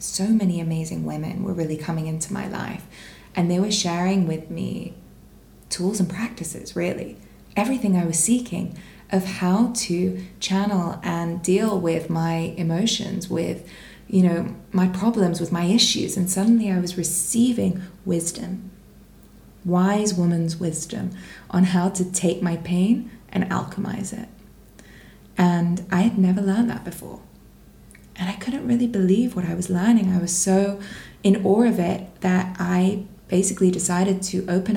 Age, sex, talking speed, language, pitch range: 20-39, female, 150 wpm, English, 175-195 Hz